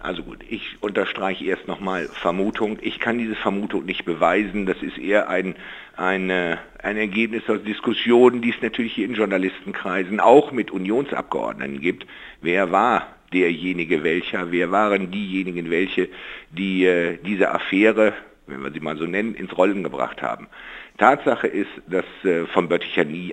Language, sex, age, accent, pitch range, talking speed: German, male, 60-79, German, 90-110 Hz, 155 wpm